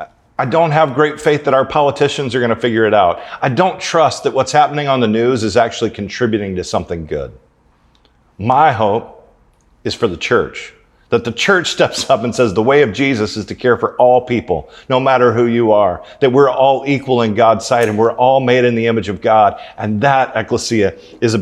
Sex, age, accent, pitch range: male, 40-59, American, 105-130 Hz